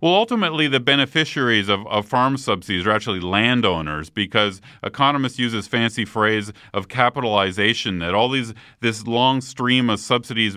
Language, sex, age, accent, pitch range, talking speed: English, male, 40-59, American, 100-125 Hz, 155 wpm